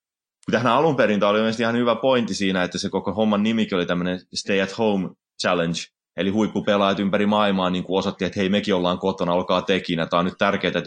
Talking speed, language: 215 wpm, Finnish